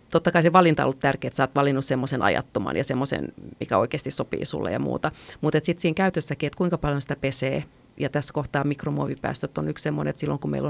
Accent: native